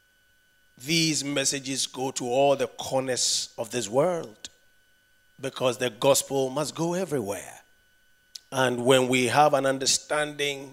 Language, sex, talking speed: English, male, 125 wpm